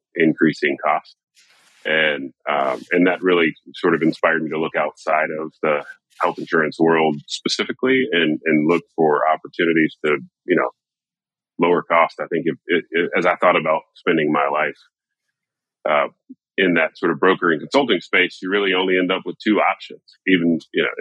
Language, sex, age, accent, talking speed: English, male, 30-49, American, 175 wpm